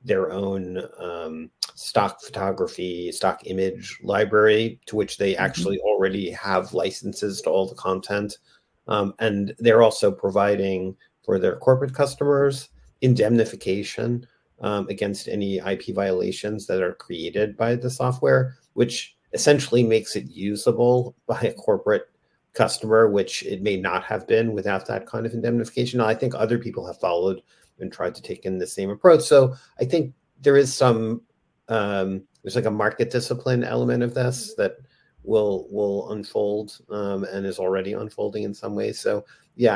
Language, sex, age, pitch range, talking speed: English, male, 40-59, 100-140 Hz, 155 wpm